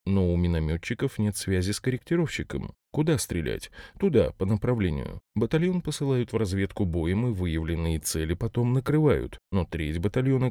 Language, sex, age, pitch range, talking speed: Russian, male, 20-39, 90-125 Hz, 145 wpm